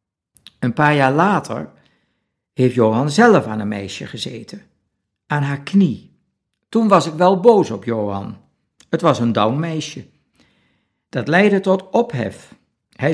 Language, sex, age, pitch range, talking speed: Dutch, male, 60-79, 120-185 Hz, 140 wpm